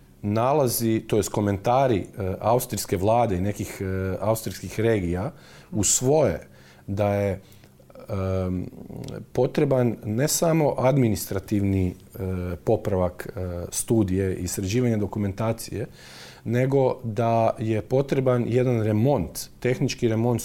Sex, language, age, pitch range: male, Croatian, 40-59, 100-125 Hz